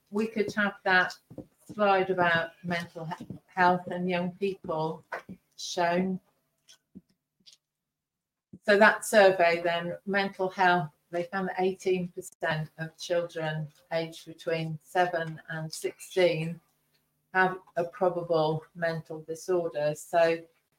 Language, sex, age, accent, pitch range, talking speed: English, female, 40-59, British, 165-190 Hz, 100 wpm